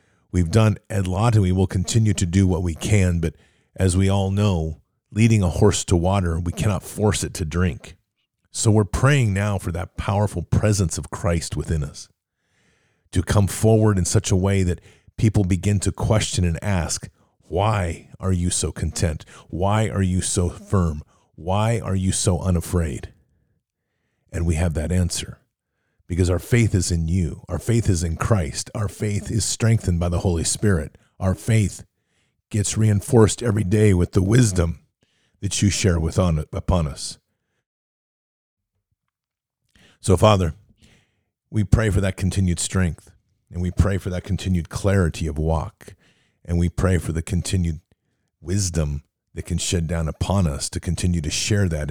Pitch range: 85-105 Hz